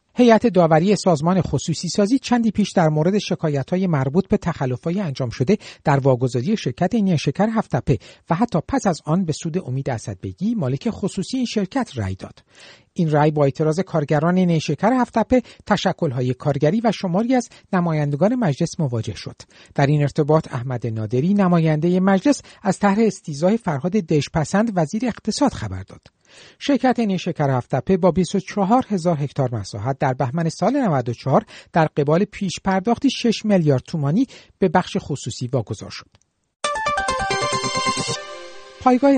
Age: 50-69